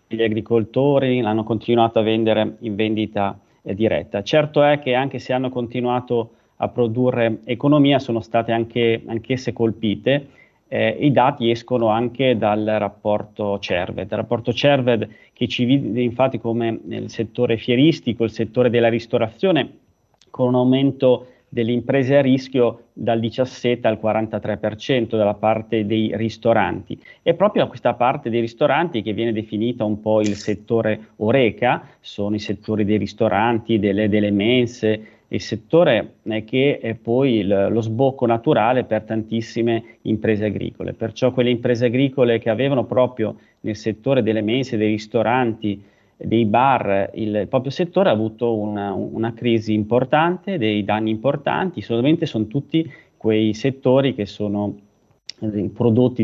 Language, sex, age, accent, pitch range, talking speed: Italian, male, 30-49, native, 105-125 Hz, 140 wpm